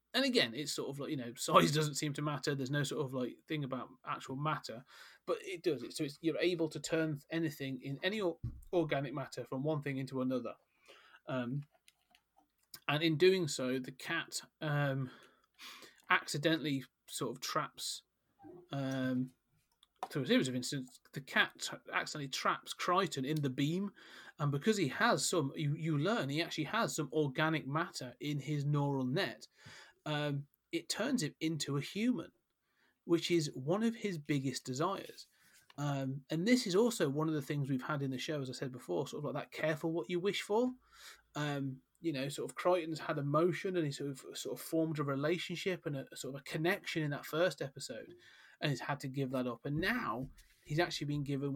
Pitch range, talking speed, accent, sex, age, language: 135-165 Hz, 195 wpm, British, male, 30-49, English